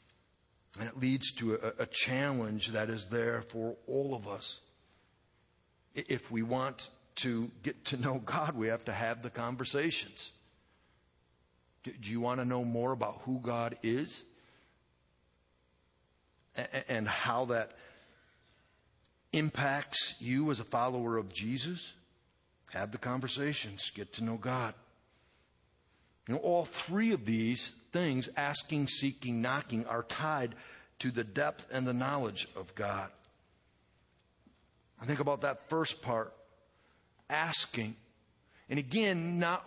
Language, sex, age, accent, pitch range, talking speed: English, male, 60-79, American, 105-140 Hz, 130 wpm